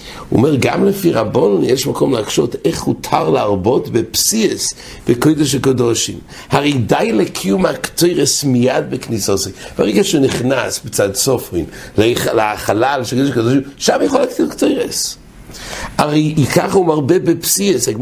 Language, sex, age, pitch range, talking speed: English, male, 60-79, 120-155 Hz, 105 wpm